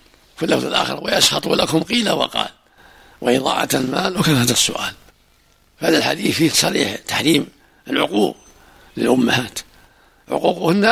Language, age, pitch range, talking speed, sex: Arabic, 60-79, 145-170 Hz, 110 wpm, male